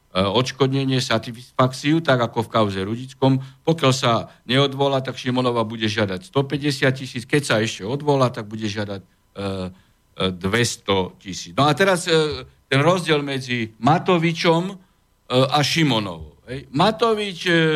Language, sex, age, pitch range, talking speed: Slovak, male, 60-79, 110-150 Hz, 120 wpm